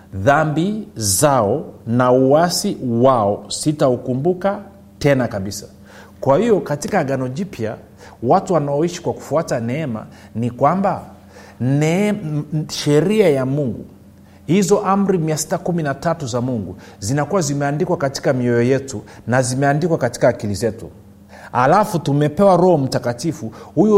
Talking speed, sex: 110 wpm, male